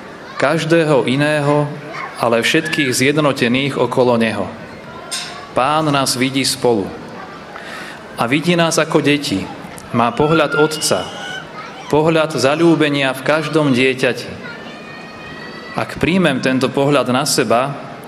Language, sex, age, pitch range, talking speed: Slovak, male, 30-49, 125-155 Hz, 100 wpm